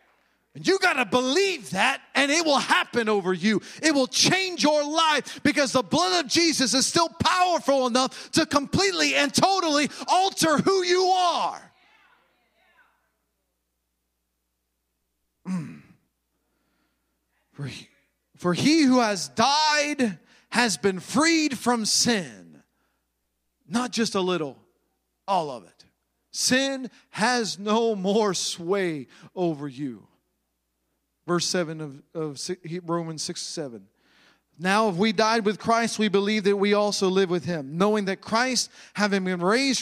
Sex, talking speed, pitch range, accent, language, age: male, 130 wpm, 175-250 Hz, American, English, 40-59